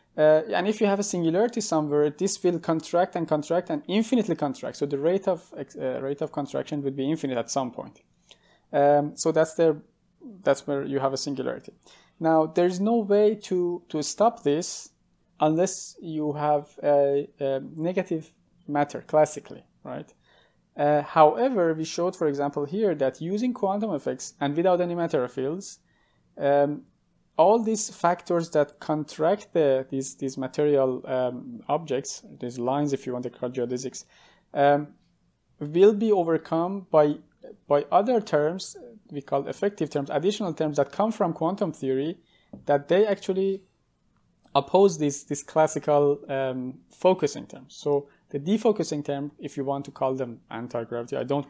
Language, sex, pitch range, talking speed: English, male, 140-180 Hz, 160 wpm